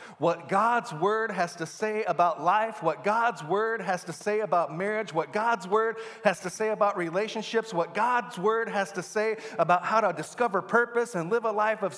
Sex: male